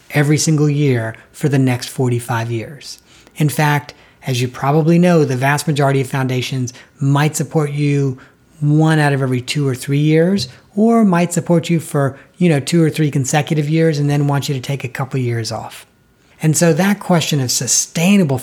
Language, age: English, 40-59